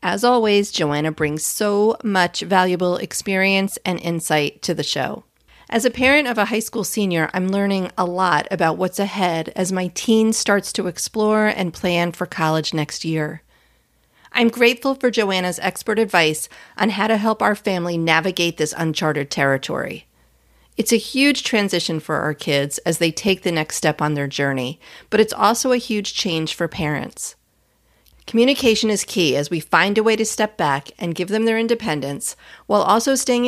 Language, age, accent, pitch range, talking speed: English, 40-59, American, 160-220 Hz, 175 wpm